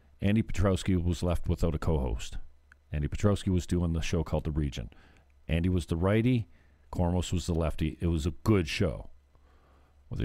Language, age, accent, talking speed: English, 50-69, American, 175 wpm